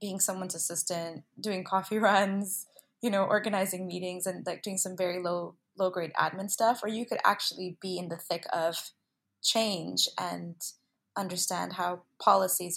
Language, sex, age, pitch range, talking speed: English, female, 20-39, 170-205 Hz, 160 wpm